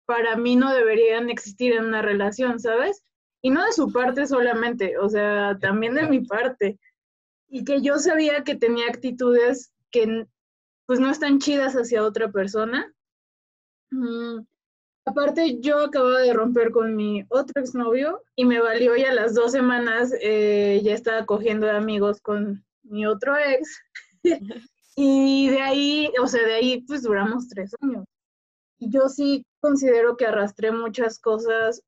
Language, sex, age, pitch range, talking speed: Spanish, female, 20-39, 215-260 Hz, 155 wpm